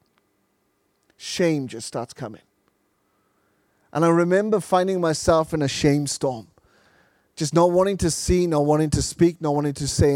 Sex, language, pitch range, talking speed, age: male, English, 130-170 Hz, 155 wpm, 30-49